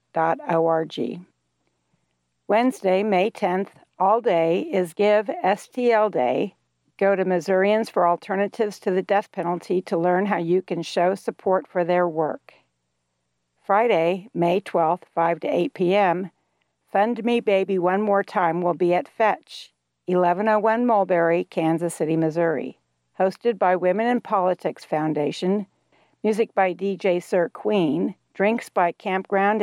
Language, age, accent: English, 60-79, American